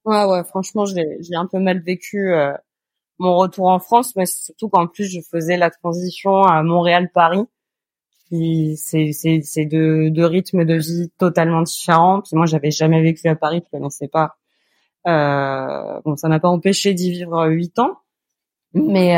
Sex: female